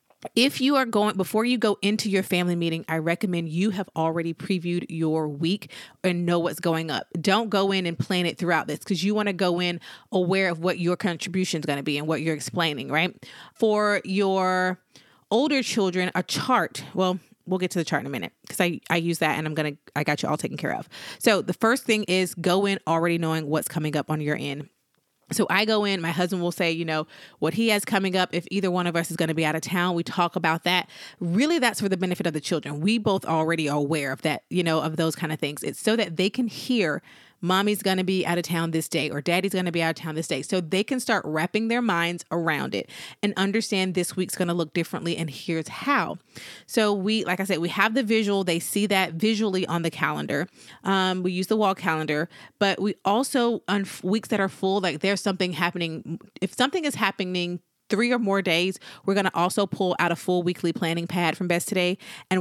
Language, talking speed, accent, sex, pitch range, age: English, 240 wpm, American, female, 165-200 Hz, 30-49